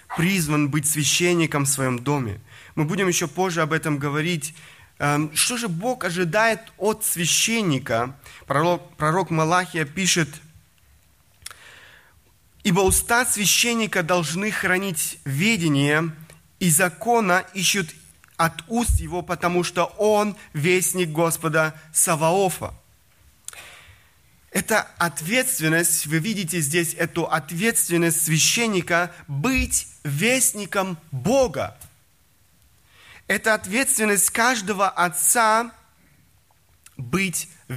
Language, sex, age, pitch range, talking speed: Russian, male, 30-49, 145-185 Hz, 90 wpm